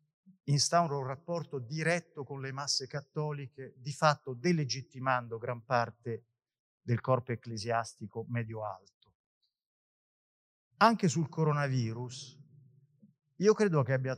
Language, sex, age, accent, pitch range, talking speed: Italian, male, 40-59, native, 115-145 Hz, 105 wpm